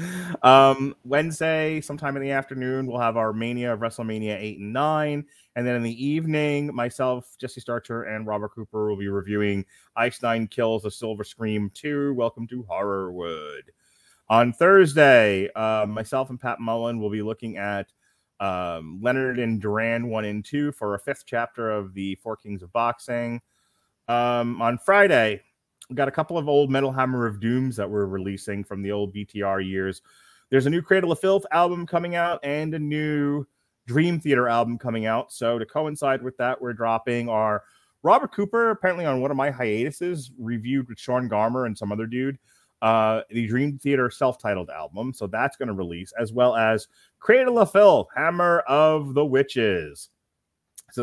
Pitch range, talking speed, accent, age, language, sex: 110-140 Hz, 180 wpm, American, 30-49, English, male